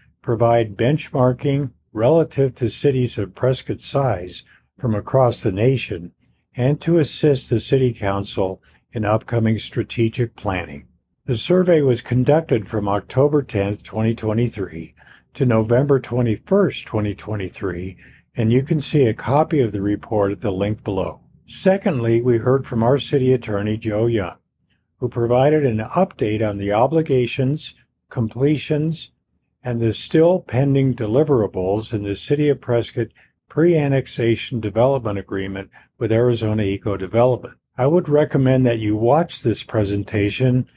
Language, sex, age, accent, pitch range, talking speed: English, male, 50-69, American, 105-140 Hz, 130 wpm